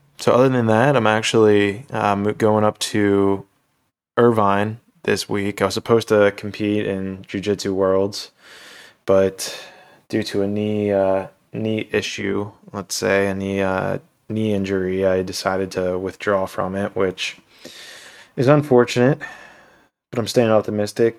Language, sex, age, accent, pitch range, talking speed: English, male, 20-39, American, 95-110 Hz, 140 wpm